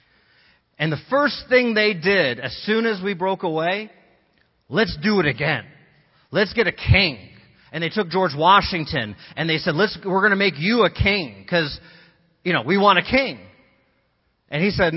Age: 40-59